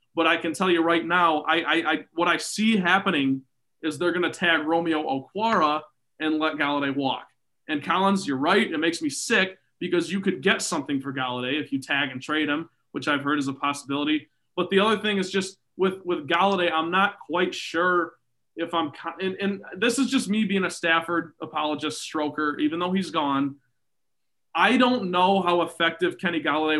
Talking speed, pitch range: 200 wpm, 150-190 Hz